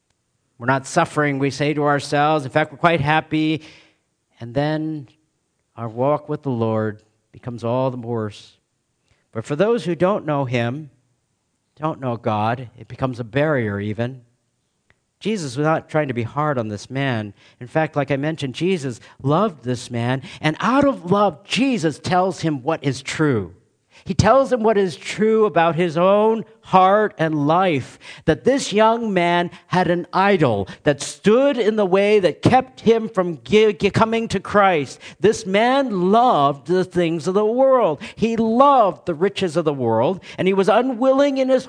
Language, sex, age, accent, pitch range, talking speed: English, male, 50-69, American, 135-200 Hz, 170 wpm